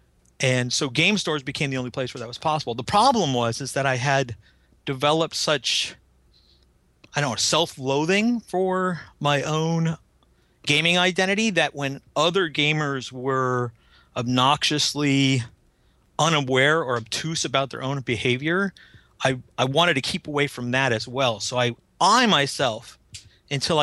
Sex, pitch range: male, 120-155 Hz